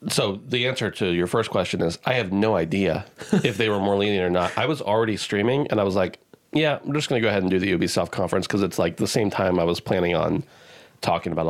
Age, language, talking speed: 30-49, English, 265 wpm